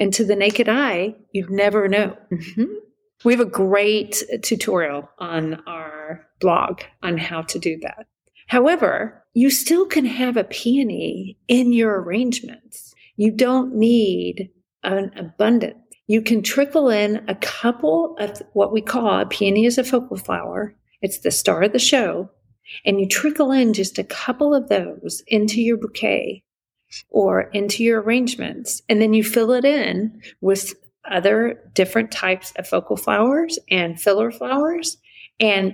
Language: English